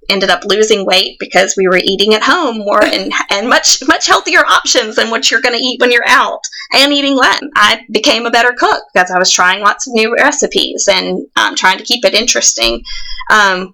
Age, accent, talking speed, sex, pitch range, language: 30-49, American, 225 wpm, female, 195-245 Hz, English